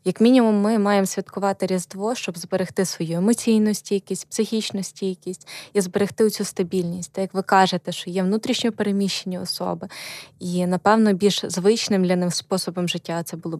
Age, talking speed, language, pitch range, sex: 20-39, 160 wpm, Ukrainian, 180-210 Hz, female